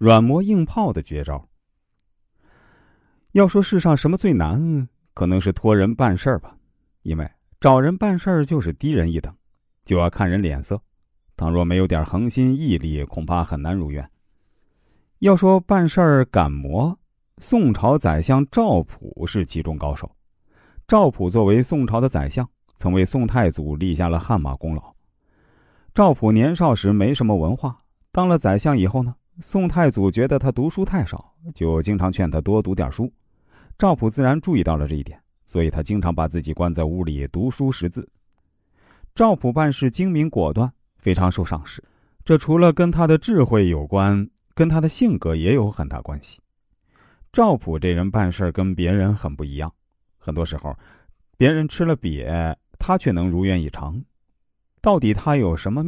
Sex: male